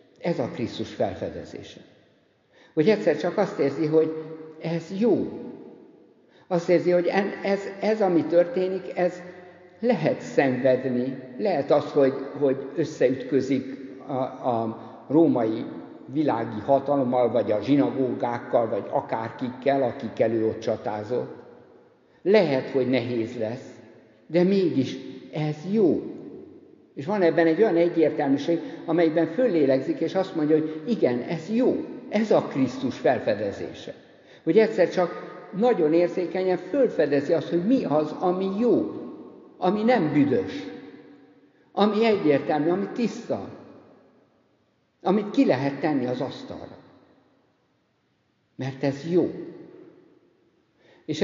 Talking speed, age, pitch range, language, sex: 110 wpm, 60-79, 140-195 Hz, Hungarian, male